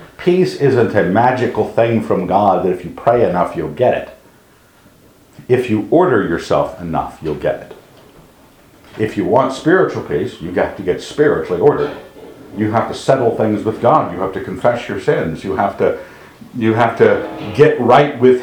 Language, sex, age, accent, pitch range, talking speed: English, male, 60-79, American, 100-145 Hz, 180 wpm